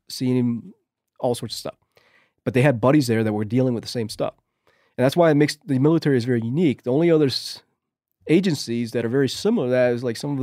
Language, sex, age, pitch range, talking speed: English, male, 30-49, 110-145 Hz, 245 wpm